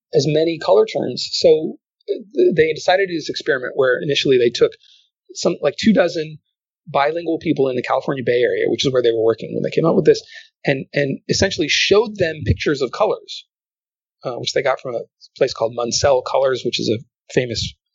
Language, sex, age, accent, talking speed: English, male, 30-49, American, 200 wpm